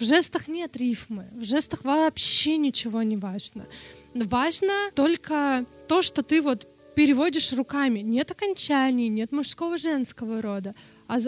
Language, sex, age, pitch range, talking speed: Russian, female, 20-39, 235-280 Hz, 135 wpm